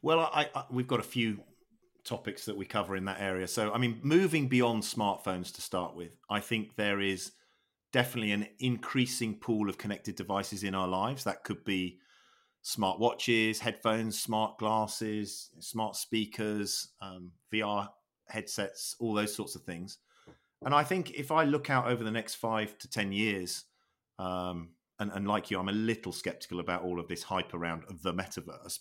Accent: British